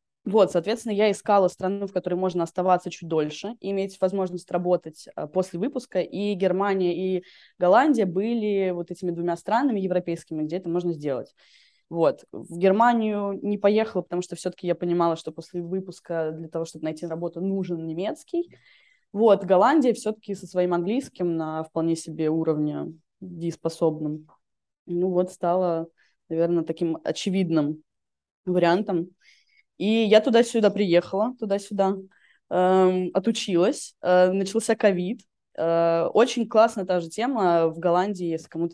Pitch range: 165-195 Hz